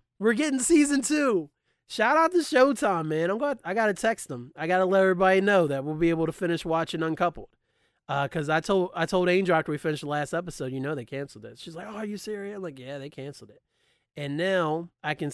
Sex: male